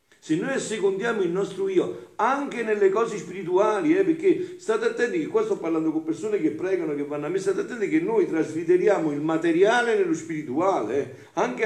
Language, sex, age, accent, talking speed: Italian, male, 50-69, native, 190 wpm